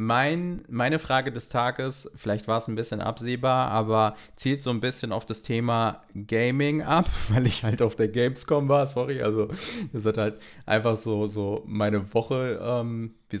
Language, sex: German, male